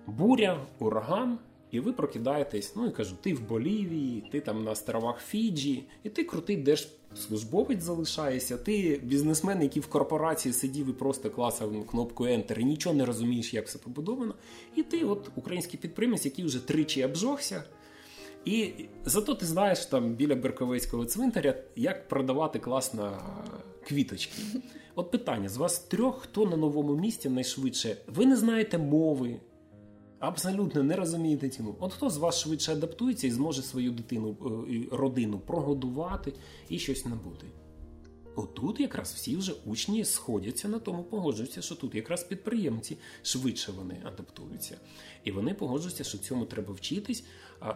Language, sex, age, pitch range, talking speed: Ukrainian, male, 20-39, 115-180 Hz, 150 wpm